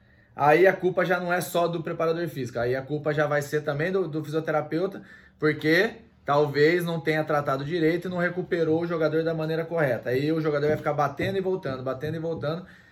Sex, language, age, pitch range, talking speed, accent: male, Portuguese, 20-39, 125-160 Hz, 210 wpm, Brazilian